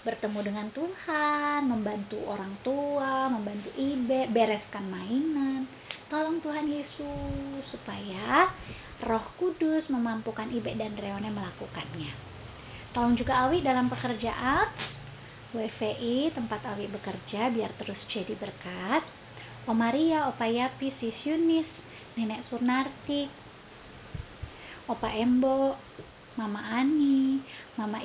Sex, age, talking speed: female, 20-39, 100 wpm